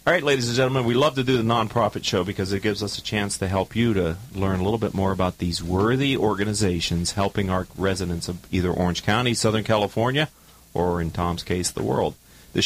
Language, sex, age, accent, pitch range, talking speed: English, male, 40-59, American, 90-130 Hz, 225 wpm